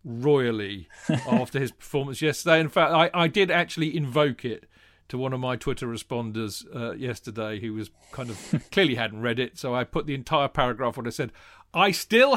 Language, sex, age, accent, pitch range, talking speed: English, male, 40-59, British, 120-170 Hz, 195 wpm